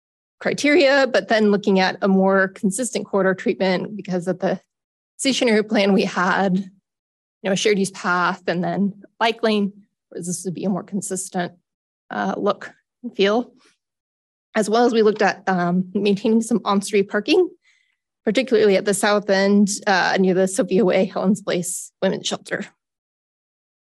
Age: 20-39